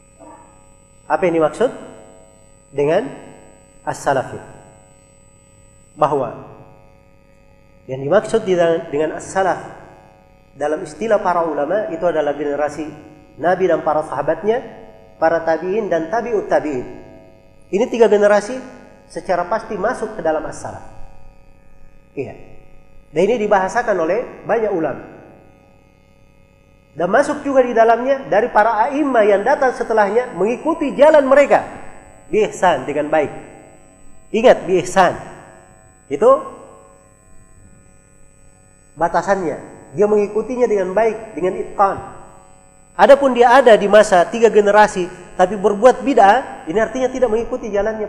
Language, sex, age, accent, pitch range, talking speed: Indonesian, male, 40-59, native, 140-220 Hz, 105 wpm